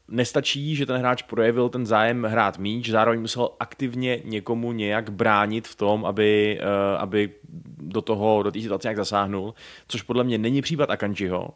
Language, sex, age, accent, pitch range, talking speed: Czech, male, 20-39, native, 100-115 Hz, 165 wpm